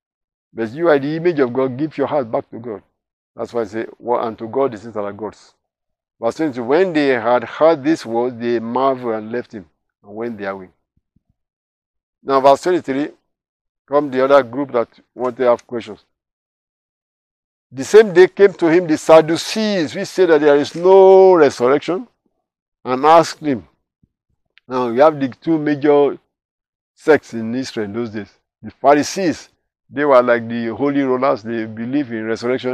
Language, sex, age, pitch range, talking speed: English, male, 50-69, 110-140 Hz, 175 wpm